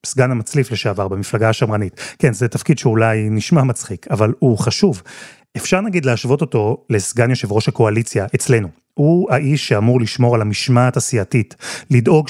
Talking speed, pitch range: 150 wpm, 115-150 Hz